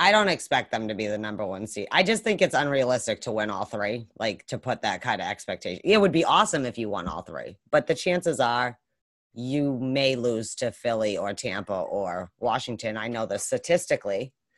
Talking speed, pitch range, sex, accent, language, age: 215 wpm, 115-155 Hz, female, American, English, 30-49